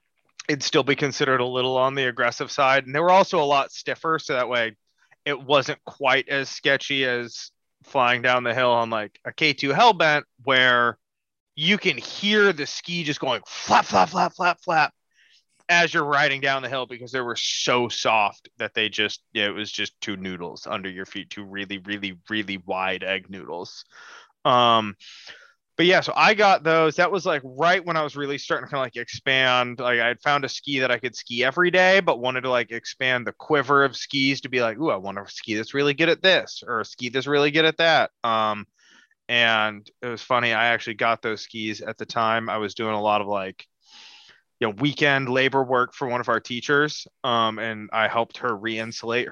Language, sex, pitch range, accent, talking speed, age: English, male, 110-145 Hz, American, 215 wpm, 30-49